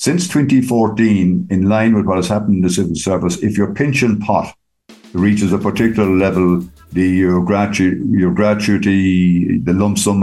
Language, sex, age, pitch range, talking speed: English, male, 60-79, 85-110 Hz, 165 wpm